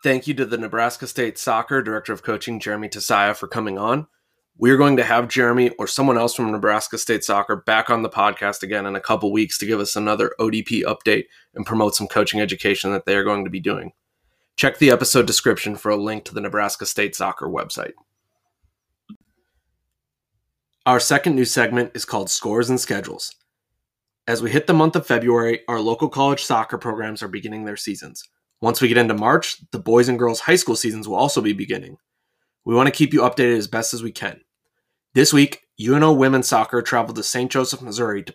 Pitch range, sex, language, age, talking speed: 110-130 Hz, male, English, 20-39, 205 wpm